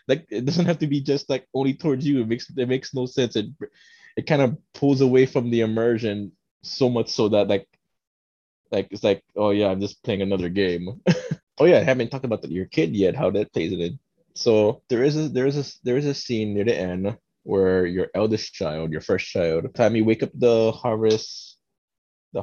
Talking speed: 220 wpm